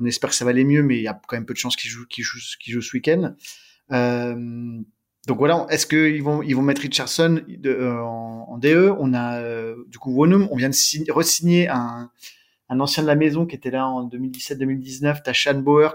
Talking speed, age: 220 wpm, 30-49